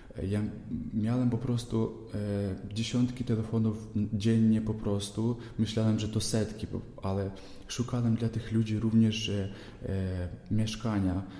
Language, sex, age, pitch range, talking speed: Polish, male, 20-39, 105-115 Hz, 115 wpm